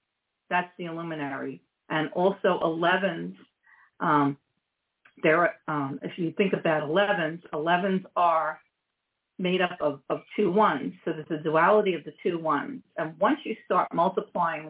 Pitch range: 155-195 Hz